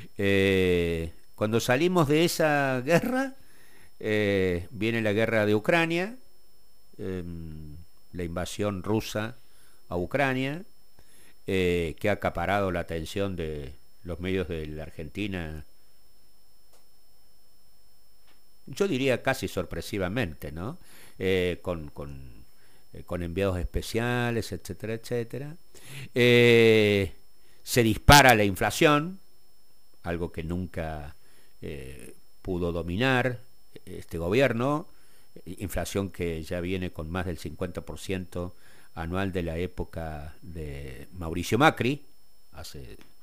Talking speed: 100 wpm